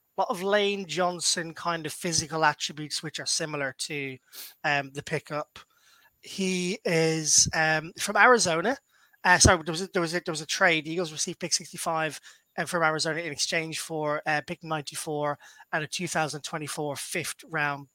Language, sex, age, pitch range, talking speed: English, male, 20-39, 155-190 Hz, 170 wpm